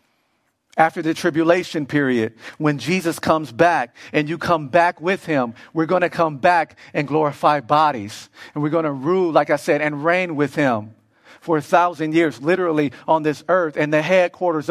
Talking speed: 185 wpm